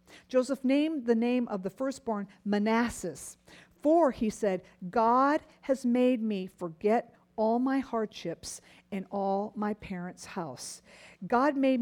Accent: American